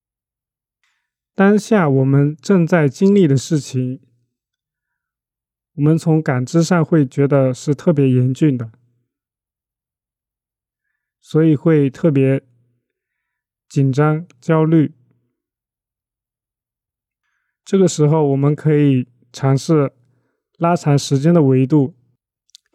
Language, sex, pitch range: Chinese, male, 130-165 Hz